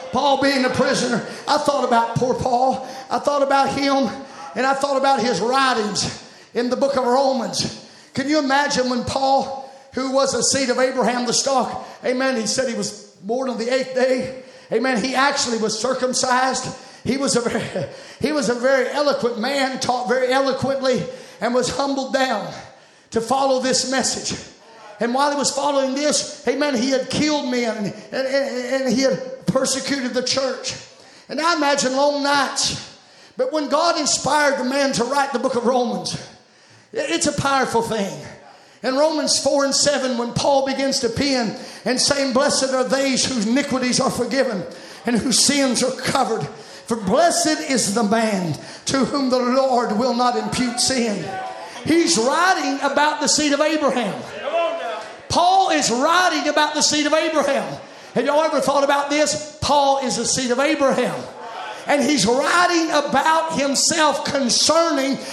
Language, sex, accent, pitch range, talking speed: English, male, American, 250-285 Hz, 165 wpm